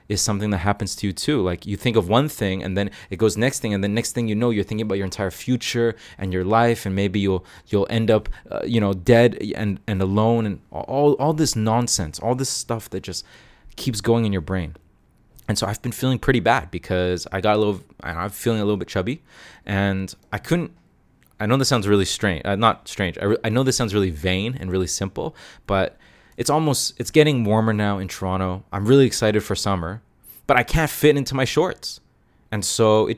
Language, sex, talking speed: English, male, 230 wpm